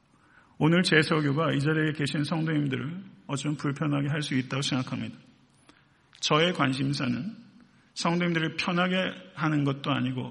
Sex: male